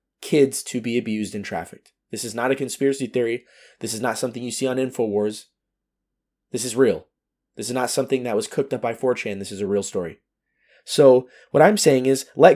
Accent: American